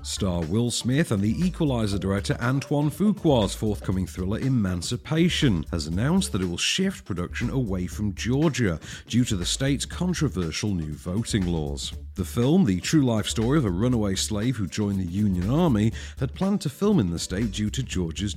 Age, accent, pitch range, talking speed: 50-69, British, 90-135 Hz, 180 wpm